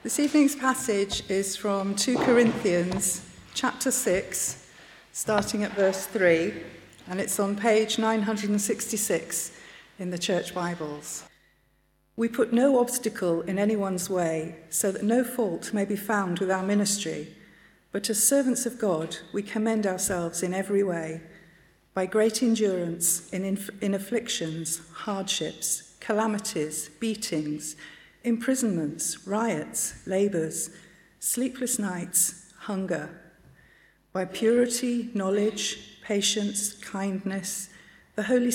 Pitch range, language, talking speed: 175-220 Hz, English, 110 wpm